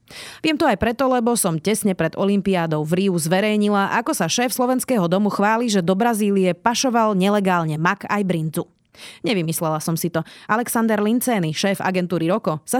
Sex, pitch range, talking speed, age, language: female, 175-230 Hz, 170 wpm, 30-49, Slovak